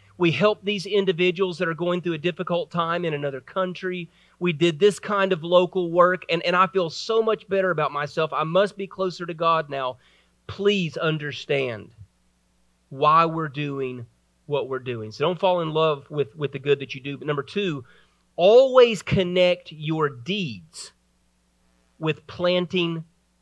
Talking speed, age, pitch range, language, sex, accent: 165 wpm, 30-49, 135-200 Hz, English, male, American